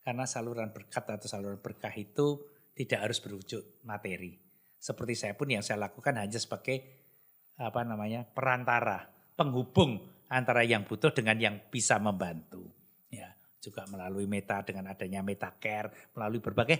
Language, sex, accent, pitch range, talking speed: Indonesian, male, native, 100-125 Hz, 145 wpm